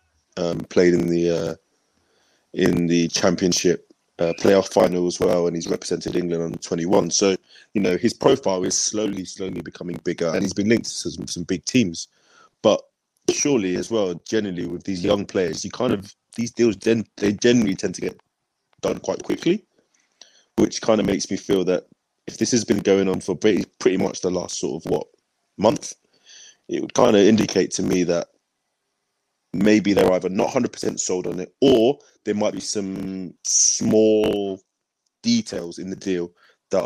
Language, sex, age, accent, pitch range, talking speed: English, male, 20-39, British, 85-105 Hz, 180 wpm